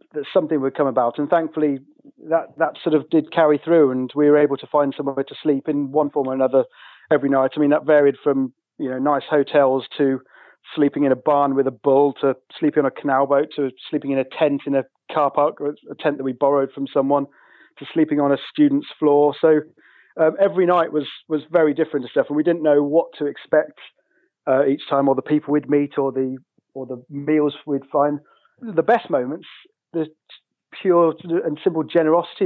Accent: British